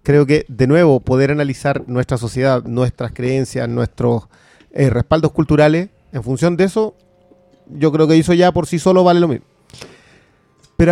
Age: 30-49